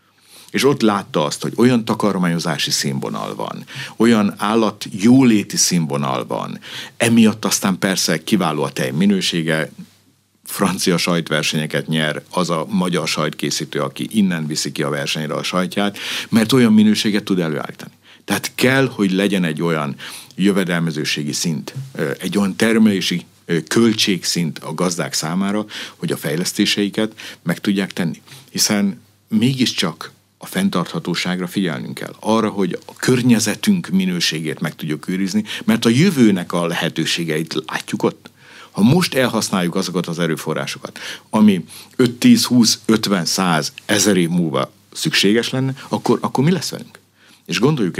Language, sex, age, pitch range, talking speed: Hungarian, male, 60-79, 90-115 Hz, 130 wpm